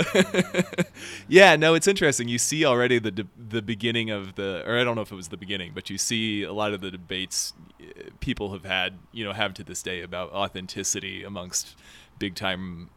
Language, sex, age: English, male, 30-49